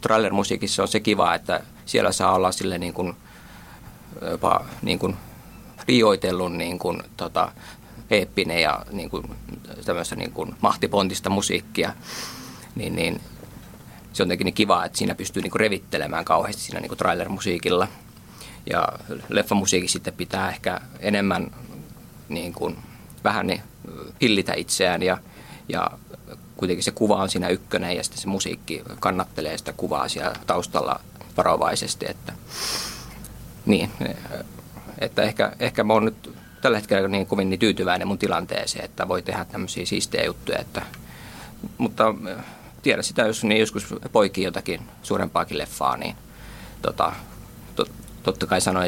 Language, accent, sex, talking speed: Finnish, native, male, 135 wpm